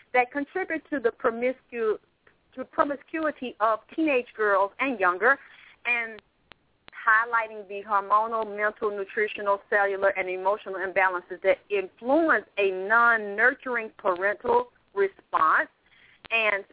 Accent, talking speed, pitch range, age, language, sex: American, 95 wpm, 220-285 Hz, 40-59, English, female